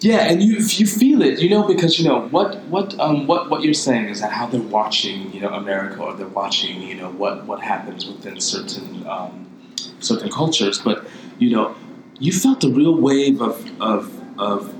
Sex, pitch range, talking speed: male, 110-185 Hz, 205 wpm